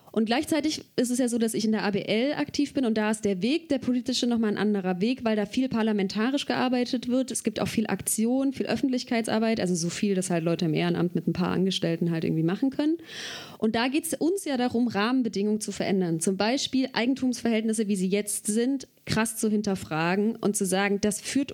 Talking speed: 215 wpm